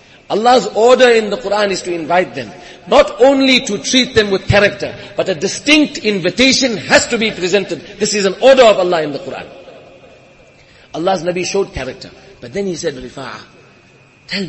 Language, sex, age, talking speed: English, male, 40-59, 180 wpm